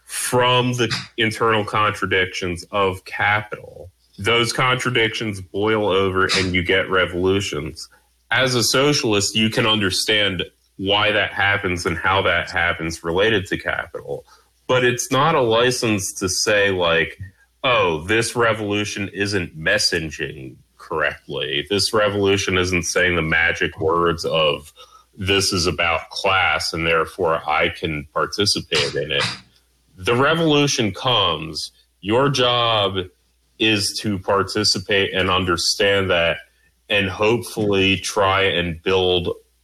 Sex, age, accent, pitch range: male, 30-49, American, 90-115 Hz